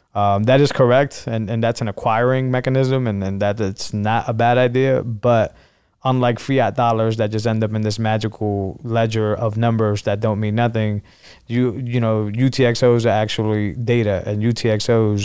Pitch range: 105-125 Hz